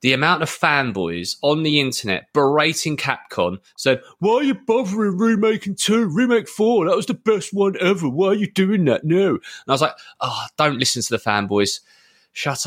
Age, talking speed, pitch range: 30-49, 195 wpm, 110-155 Hz